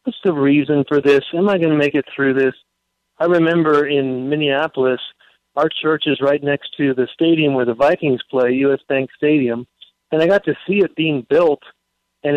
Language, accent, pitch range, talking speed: English, American, 145-180 Hz, 200 wpm